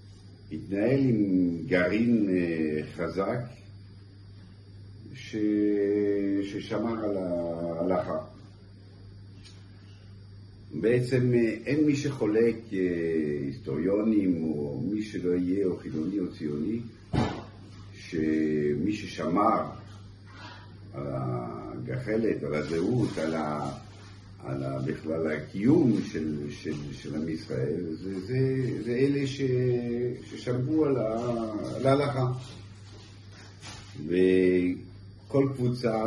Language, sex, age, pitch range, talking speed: Hebrew, male, 50-69, 85-105 Hz, 80 wpm